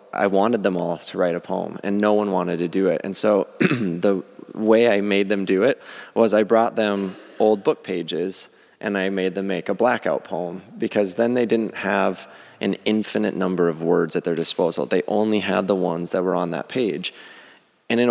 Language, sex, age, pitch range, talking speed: English, male, 20-39, 95-105 Hz, 210 wpm